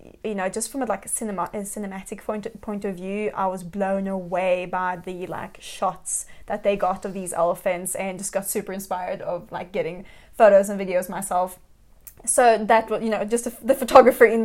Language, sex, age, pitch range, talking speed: English, female, 20-39, 195-225 Hz, 185 wpm